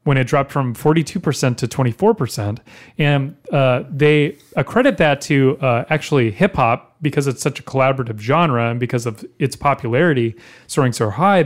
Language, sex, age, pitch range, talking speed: English, male, 30-49, 125-165 Hz, 155 wpm